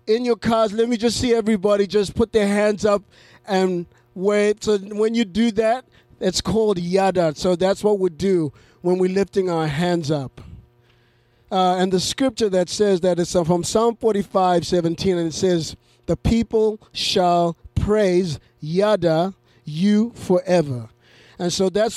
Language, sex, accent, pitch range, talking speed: English, male, American, 165-200 Hz, 160 wpm